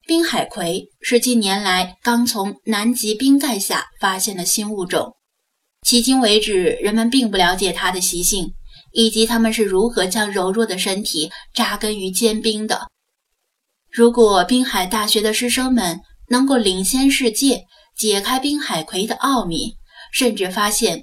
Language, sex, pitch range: Chinese, female, 195-245 Hz